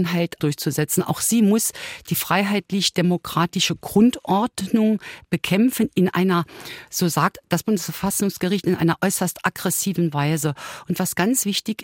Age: 50-69